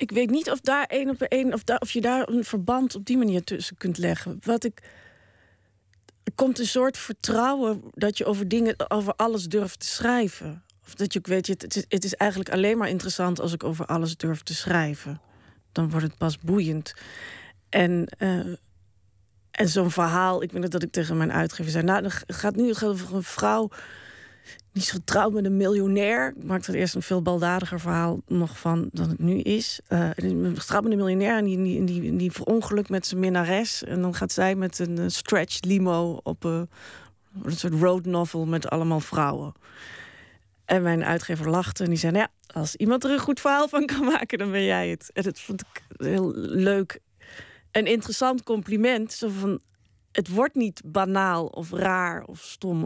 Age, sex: 40-59, female